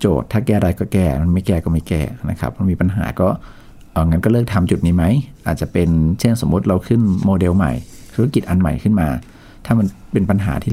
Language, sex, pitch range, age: Thai, male, 80-105 Hz, 60-79